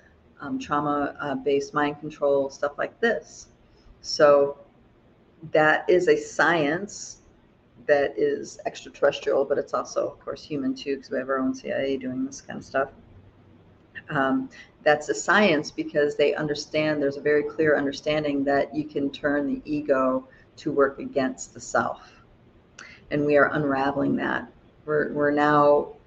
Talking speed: 150 wpm